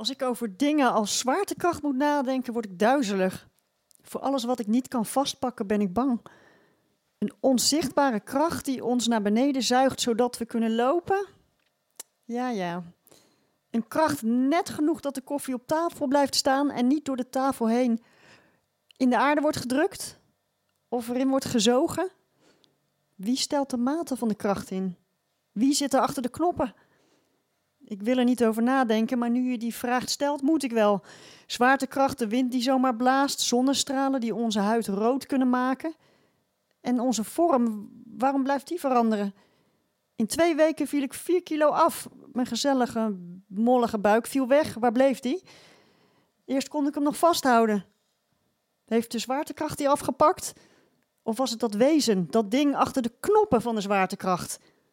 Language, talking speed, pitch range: Dutch, 165 wpm, 230-280 Hz